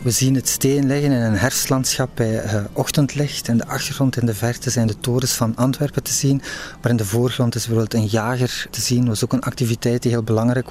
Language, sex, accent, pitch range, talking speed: Dutch, male, Dutch, 110-125 Hz, 230 wpm